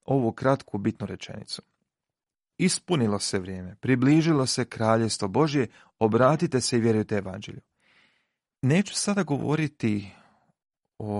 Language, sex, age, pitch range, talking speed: Croatian, male, 40-59, 105-140 Hz, 105 wpm